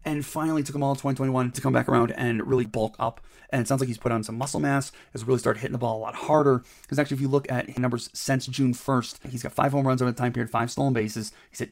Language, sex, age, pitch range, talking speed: English, male, 30-49, 115-140 Hz, 300 wpm